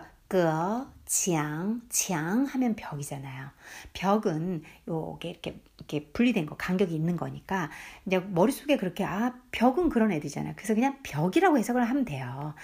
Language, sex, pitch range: Korean, female, 165-245 Hz